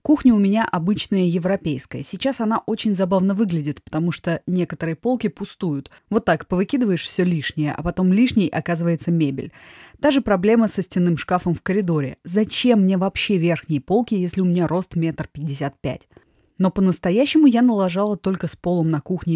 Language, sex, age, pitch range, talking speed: Russian, female, 20-39, 165-210 Hz, 165 wpm